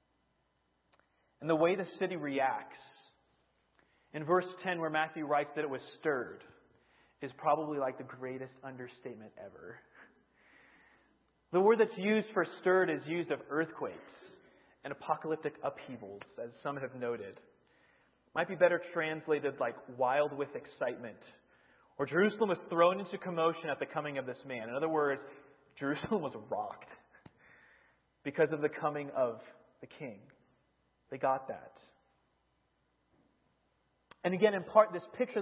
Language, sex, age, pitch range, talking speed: English, male, 30-49, 140-190 Hz, 140 wpm